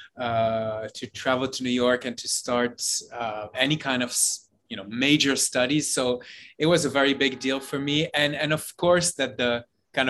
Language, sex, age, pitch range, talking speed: English, male, 30-49, 120-145 Hz, 195 wpm